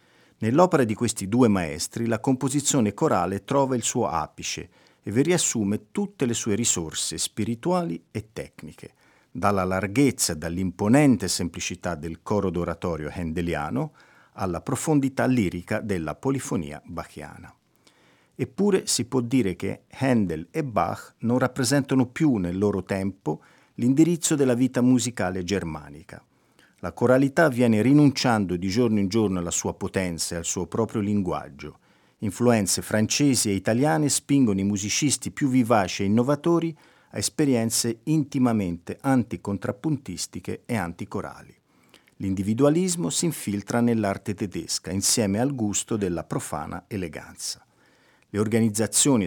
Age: 50-69